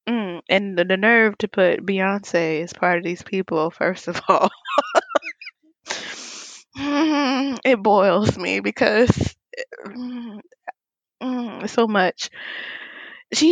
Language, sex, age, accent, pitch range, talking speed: English, female, 20-39, American, 165-225 Hz, 115 wpm